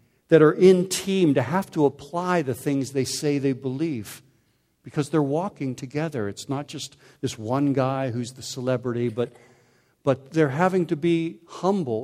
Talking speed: 170 wpm